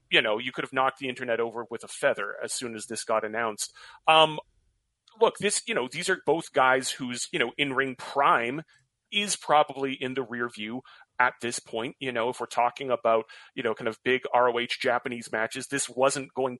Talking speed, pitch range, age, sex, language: 210 wpm, 125-155 Hz, 30-49, male, English